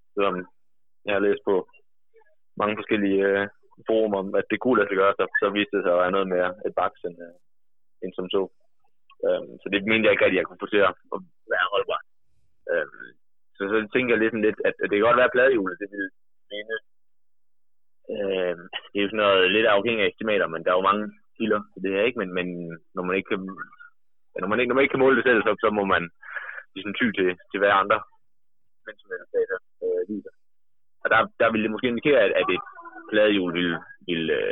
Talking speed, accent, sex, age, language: 215 wpm, native, male, 20-39, Danish